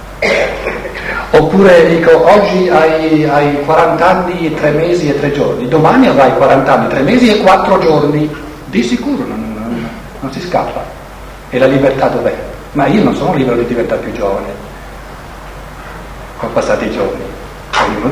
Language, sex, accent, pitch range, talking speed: Italian, male, native, 150-215 Hz, 160 wpm